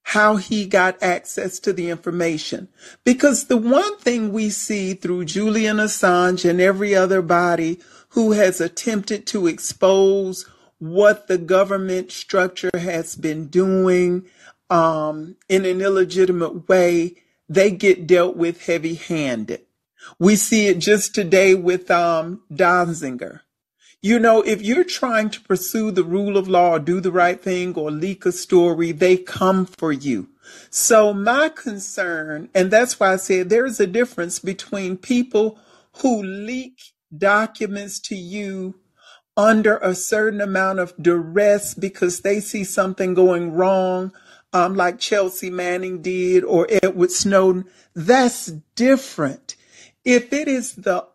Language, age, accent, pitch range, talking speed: English, 40-59, American, 180-210 Hz, 140 wpm